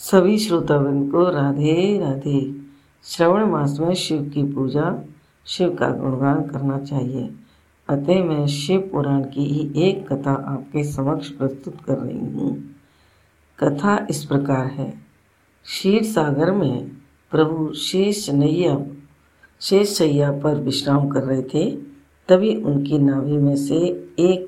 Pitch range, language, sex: 140-175 Hz, Hindi, female